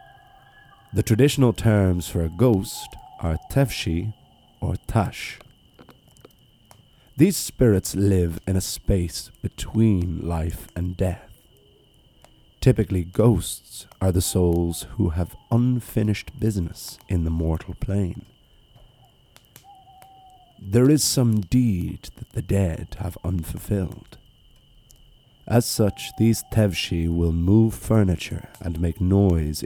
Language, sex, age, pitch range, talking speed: English, male, 50-69, 85-120 Hz, 105 wpm